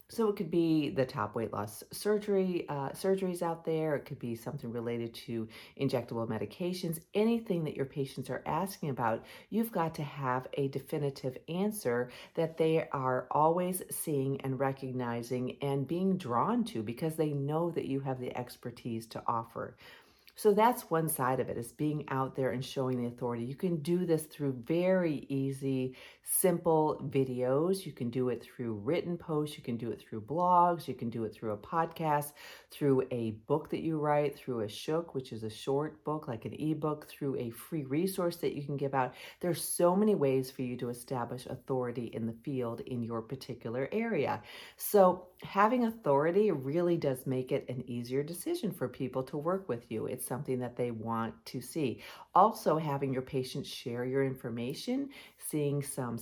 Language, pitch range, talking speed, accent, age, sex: English, 125-165 Hz, 185 wpm, American, 50-69, female